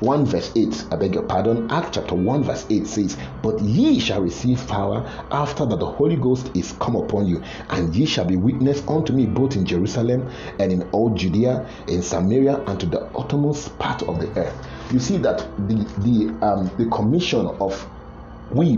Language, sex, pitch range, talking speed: English, male, 95-135 Hz, 195 wpm